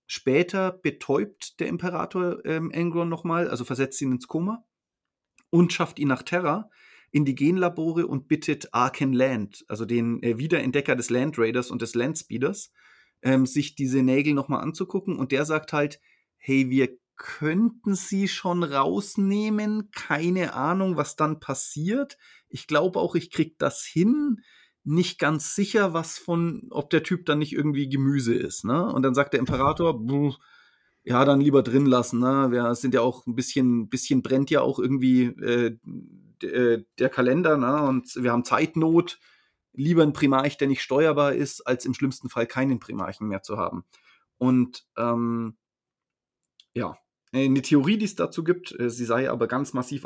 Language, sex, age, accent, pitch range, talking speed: German, male, 30-49, German, 130-170 Hz, 165 wpm